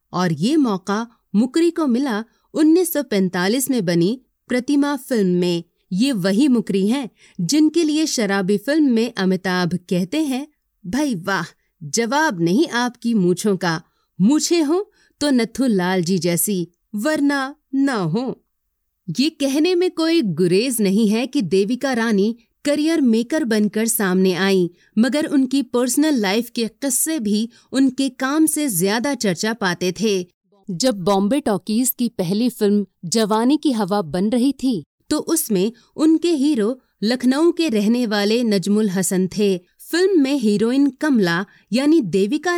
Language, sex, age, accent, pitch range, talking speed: Hindi, female, 30-49, native, 195-280 Hz, 140 wpm